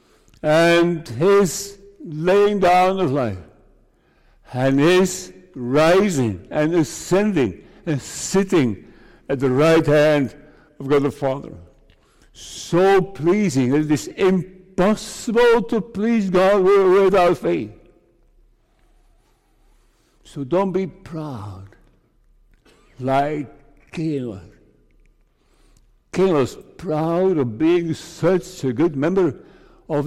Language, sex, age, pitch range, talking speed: English, male, 60-79, 135-185 Hz, 95 wpm